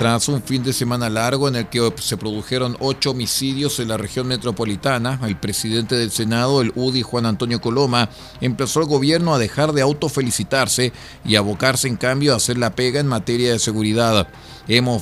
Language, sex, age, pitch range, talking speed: Spanish, male, 40-59, 110-130 Hz, 185 wpm